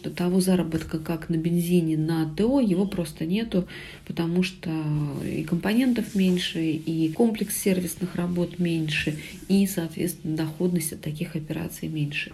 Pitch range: 165-195 Hz